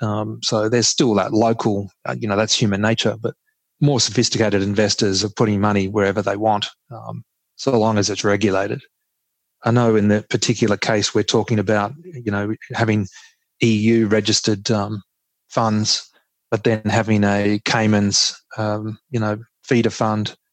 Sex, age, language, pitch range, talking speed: male, 30-49, English, 105-115 Hz, 155 wpm